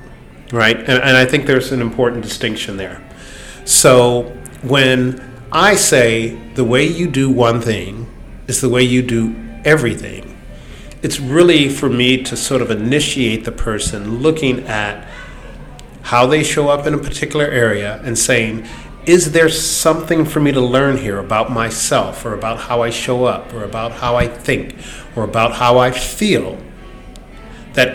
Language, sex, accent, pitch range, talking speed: English, male, American, 115-140 Hz, 160 wpm